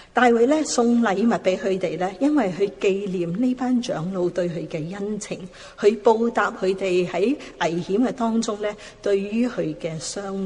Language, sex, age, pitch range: Chinese, female, 40-59, 175-230 Hz